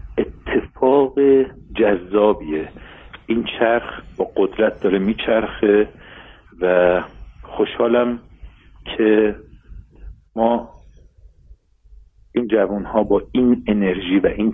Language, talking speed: Persian, 80 wpm